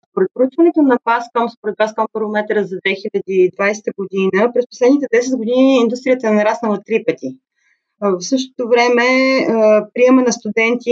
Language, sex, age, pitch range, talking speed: Bulgarian, female, 30-49, 190-245 Hz, 135 wpm